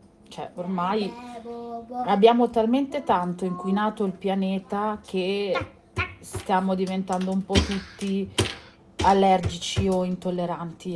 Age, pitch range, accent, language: 30-49, 170-190 Hz, native, Italian